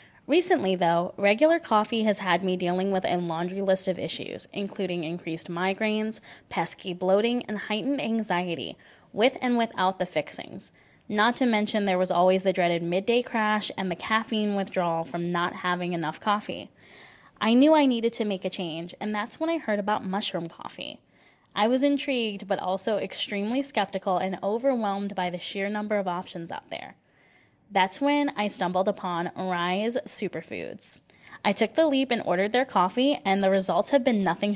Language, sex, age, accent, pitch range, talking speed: English, female, 10-29, American, 180-220 Hz, 175 wpm